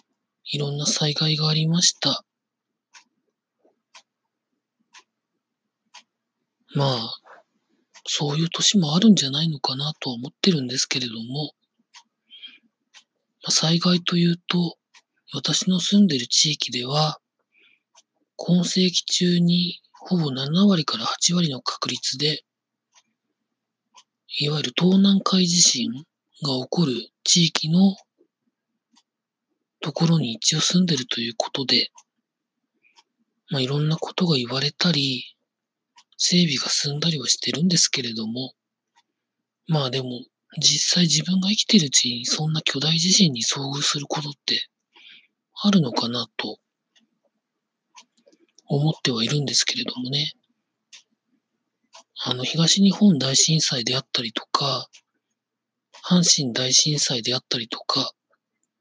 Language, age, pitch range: Japanese, 40-59, 140-190 Hz